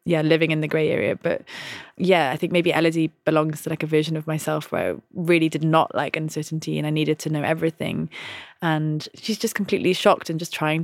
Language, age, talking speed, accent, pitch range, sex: English, 20-39, 220 wpm, British, 160-180 Hz, female